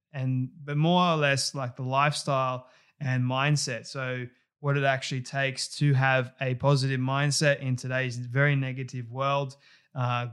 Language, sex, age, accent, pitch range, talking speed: English, male, 20-39, Australian, 130-155 Hz, 150 wpm